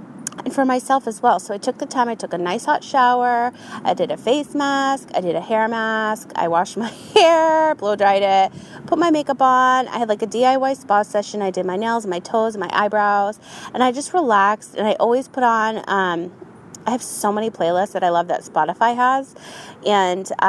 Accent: American